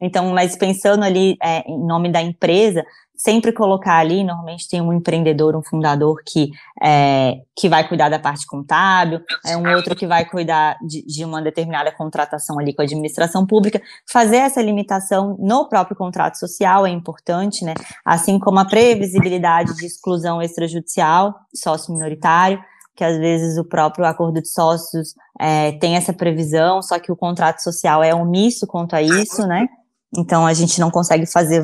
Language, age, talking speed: Portuguese, 20-39, 165 wpm